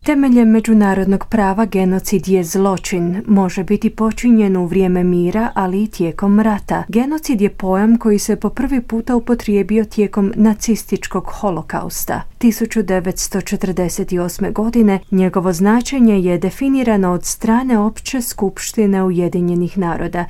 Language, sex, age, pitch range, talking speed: Croatian, female, 30-49, 185-220 Hz, 120 wpm